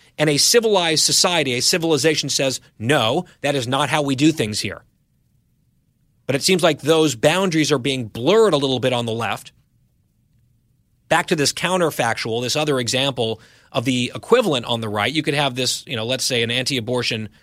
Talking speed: 185 wpm